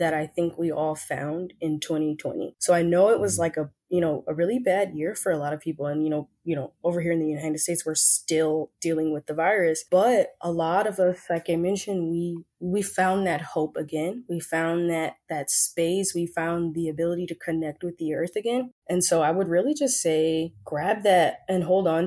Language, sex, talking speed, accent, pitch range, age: English, female, 230 wpm, American, 155-180 Hz, 20-39